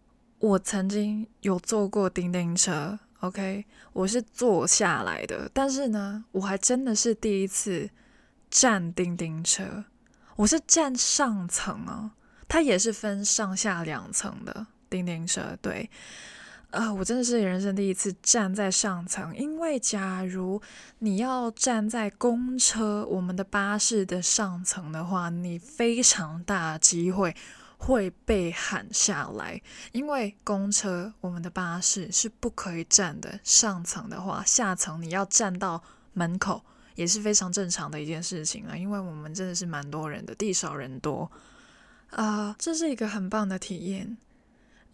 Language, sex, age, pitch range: Chinese, female, 20-39, 185-230 Hz